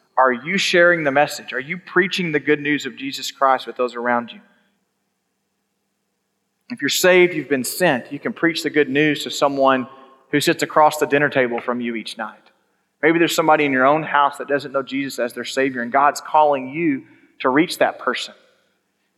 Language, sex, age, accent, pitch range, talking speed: English, male, 30-49, American, 140-170 Hz, 205 wpm